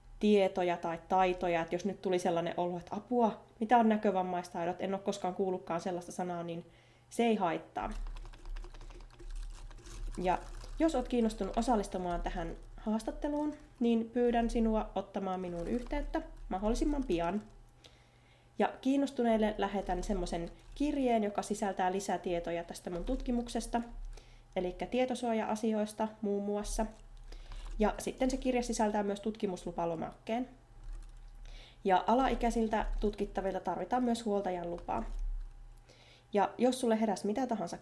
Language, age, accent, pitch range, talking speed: Finnish, 20-39, native, 180-235 Hz, 120 wpm